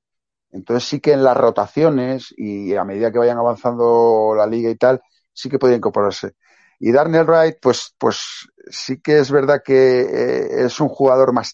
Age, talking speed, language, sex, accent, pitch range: 30-49, 180 wpm, Spanish, male, Spanish, 110-140 Hz